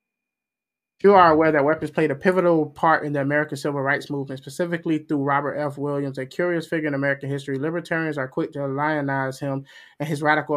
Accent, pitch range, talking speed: American, 140-160 Hz, 200 wpm